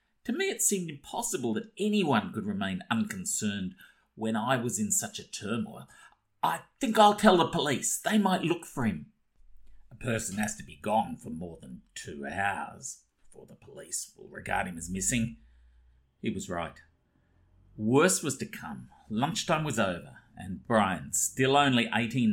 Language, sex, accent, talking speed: English, male, Australian, 165 wpm